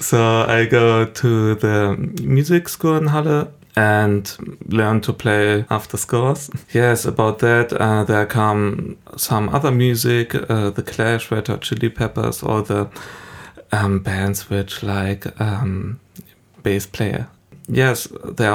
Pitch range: 105-130 Hz